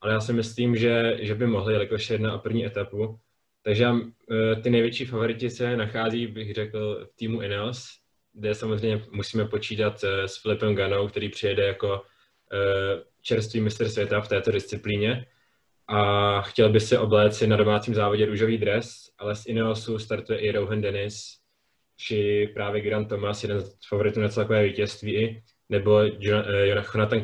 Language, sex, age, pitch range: Czech, male, 20-39, 100-110 Hz